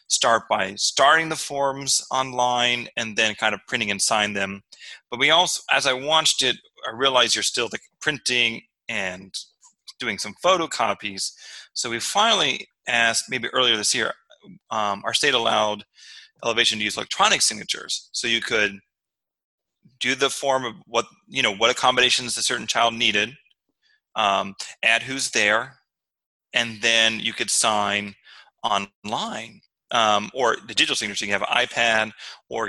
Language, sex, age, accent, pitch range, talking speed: English, male, 30-49, American, 110-140 Hz, 155 wpm